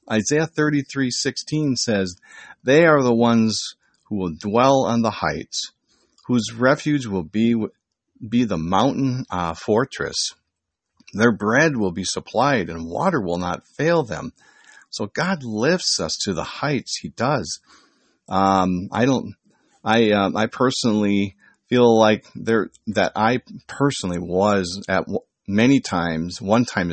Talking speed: 145 wpm